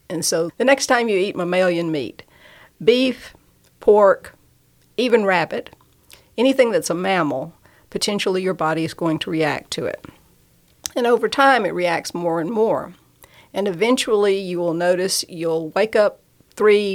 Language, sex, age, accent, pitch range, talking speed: English, female, 50-69, American, 180-215 Hz, 150 wpm